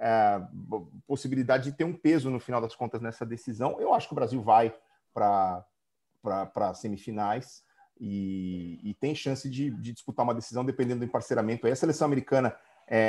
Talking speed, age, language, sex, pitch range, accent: 165 wpm, 40-59, Portuguese, male, 110-140 Hz, Brazilian